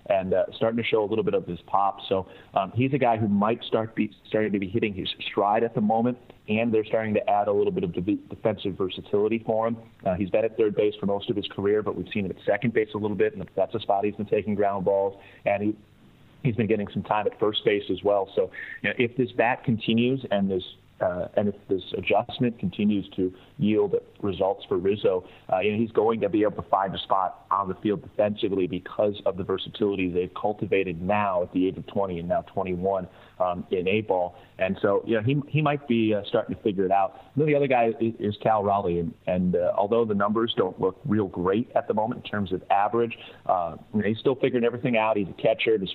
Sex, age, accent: male, 30-49, American